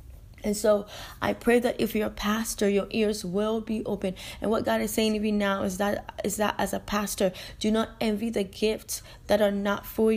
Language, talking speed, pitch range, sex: English, 225 wpm, 195-220 Hz, female